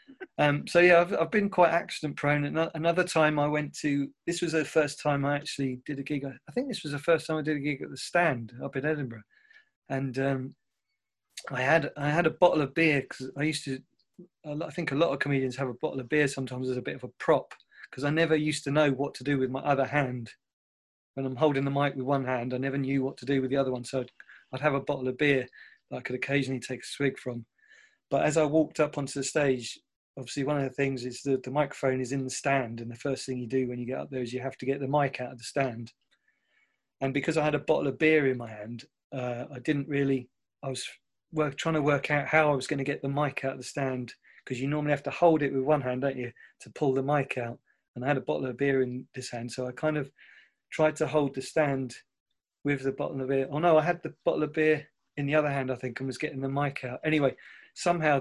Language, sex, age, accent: English, male, 30-49, British